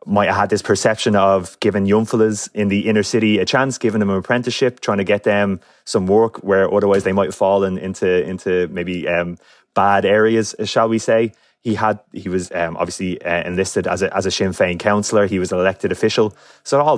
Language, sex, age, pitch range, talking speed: English, male, 20-39, 95-110 Hz, 220 wpm